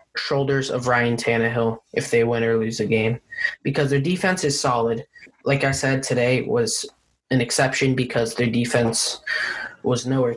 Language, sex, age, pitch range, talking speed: English, male, 20-39, 120-140 Hz, 160 wpm